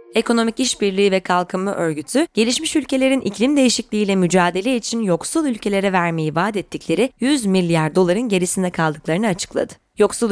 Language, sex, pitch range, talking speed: Turkish, female, 170-235 Hz, 135 wpm